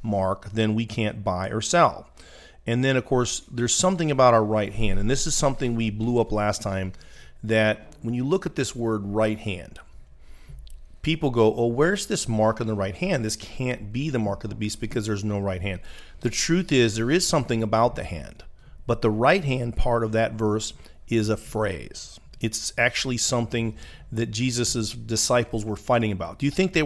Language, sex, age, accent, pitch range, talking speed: English, male, 40-59, American, 105-130 Hz, 205 wpm